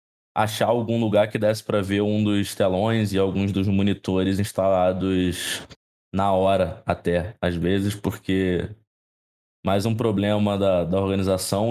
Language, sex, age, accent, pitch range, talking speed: Portuguese, male, 20-39, Brazilian, 95-115 Hz, 140 wpm